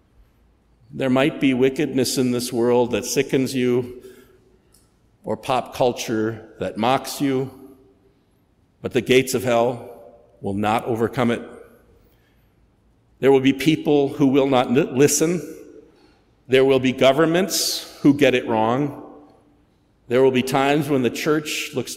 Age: 50-69